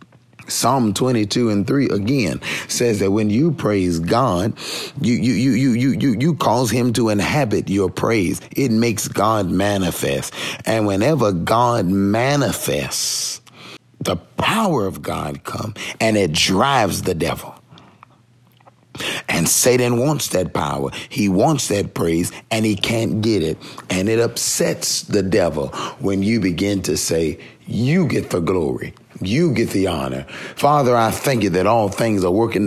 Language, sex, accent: English, male, American